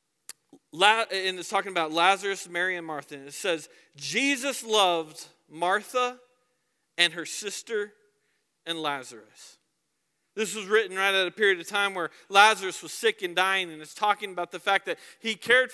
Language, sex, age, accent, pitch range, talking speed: English, male, 40-59, American, 175-240 Hz, 165 wpm